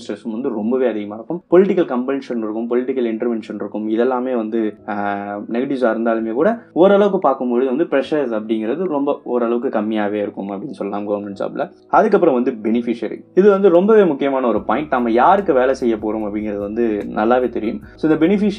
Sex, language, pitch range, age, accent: male, Tamil, 105-135 Hz, 20-39, native